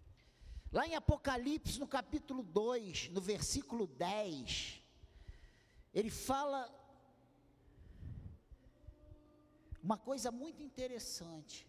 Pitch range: 210-290 Hz